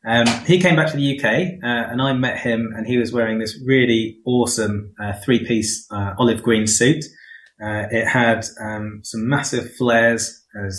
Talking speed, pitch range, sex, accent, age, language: 185 wpm, 110-125 Hz, male, British, 20-39, English